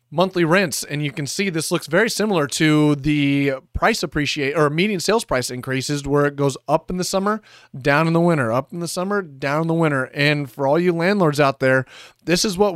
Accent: American